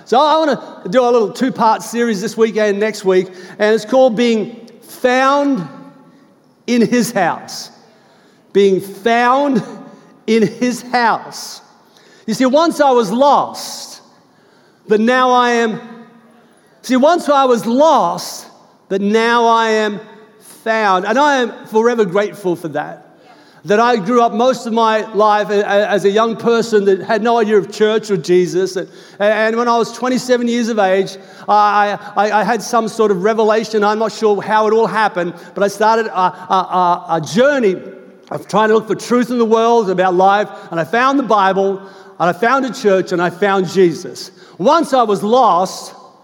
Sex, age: male, 50-69